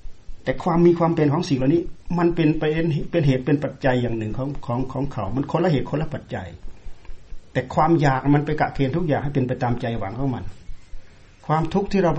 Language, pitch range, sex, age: Thai, 115-155 Hz, male, 60-79